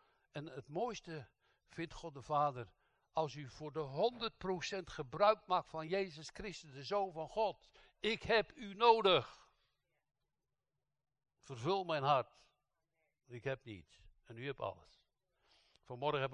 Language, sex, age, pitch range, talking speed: Dutch, male, 60-79, 125-165 Hz, 140 wpm